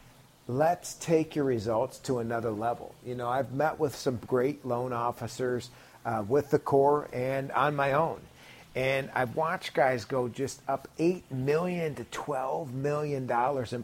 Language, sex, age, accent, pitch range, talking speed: English, male, 40-59, American, 130-170 Hz, 160 wpm